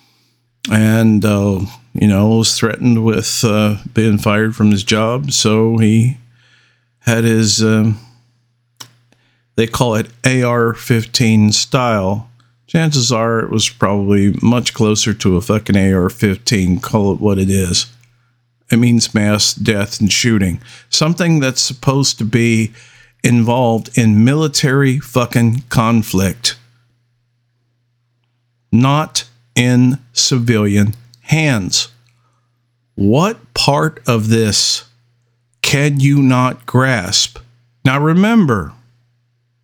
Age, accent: 50-69, American